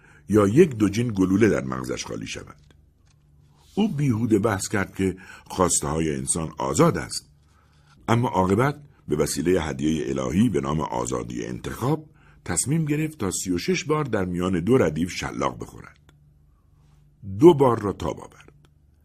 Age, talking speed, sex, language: 60-79, 140 wpm, male, Persian